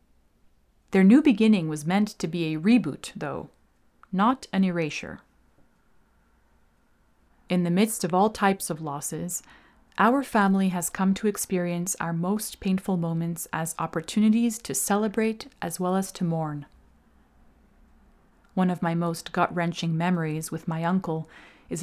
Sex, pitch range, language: female, 160-195 Hz, English